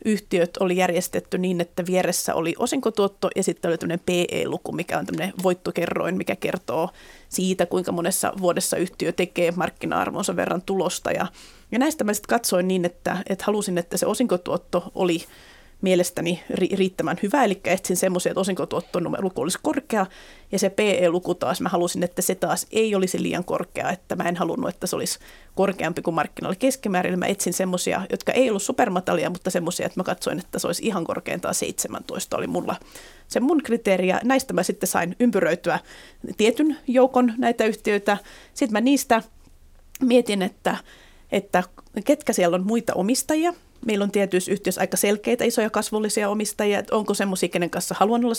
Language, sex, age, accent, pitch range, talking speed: Finnish, female, 30-49, native, 180-220 Hz, 170 wpm